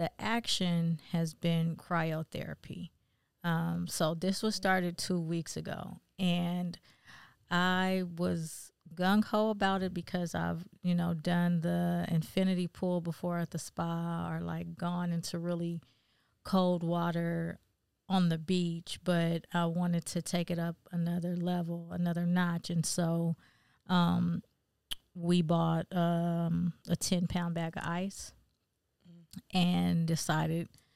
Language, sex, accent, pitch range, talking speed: English, female, American, 165-185 Hz, 130 wpm